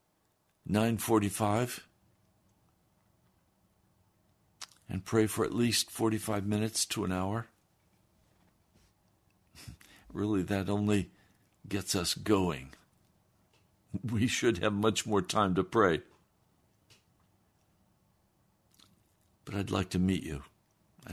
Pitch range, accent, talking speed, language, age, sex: 95-110 Hz, American, 90 wpm, English, 60-79, male